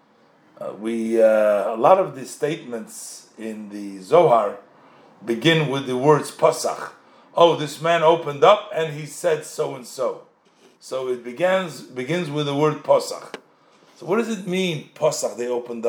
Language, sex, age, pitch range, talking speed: English, male, 50-69, 120-170 Hz, 155 wpm